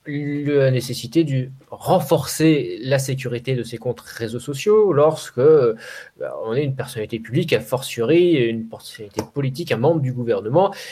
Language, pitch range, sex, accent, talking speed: French, 125-180 Hz, male, French, 150 wpm